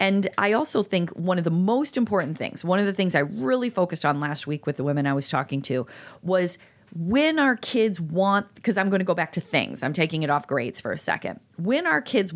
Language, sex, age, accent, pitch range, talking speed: English, female, 40-59, American, 145-200 Hz, 250 wpm